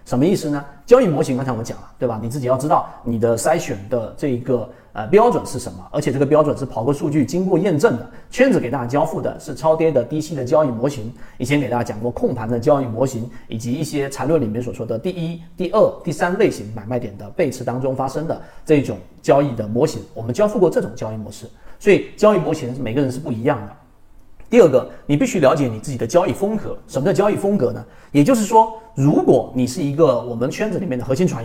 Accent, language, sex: native, Chinese, male